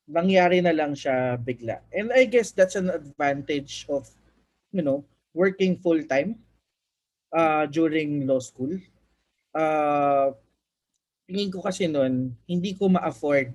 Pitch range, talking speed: 130-170 Hz, 125 wpm